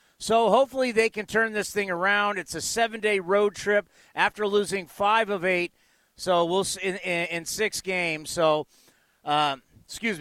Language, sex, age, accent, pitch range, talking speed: English, male, 40-59, American, 160-210 Hz, 160 wpm